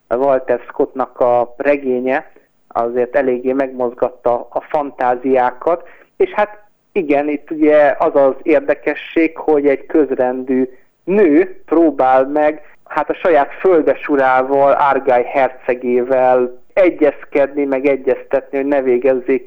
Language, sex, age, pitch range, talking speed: Hungarian, male, 50-69, 130-150 Hz, 110 wpm